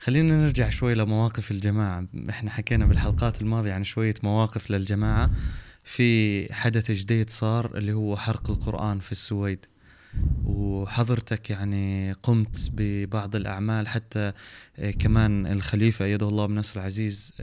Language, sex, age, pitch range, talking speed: Arabic, male, 20-39, 105-125 Hz, 125 wpm